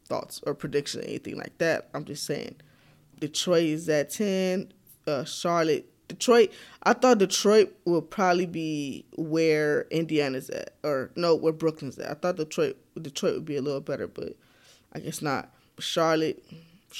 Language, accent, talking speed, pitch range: English, American, 160 wpm, 150-180 Hz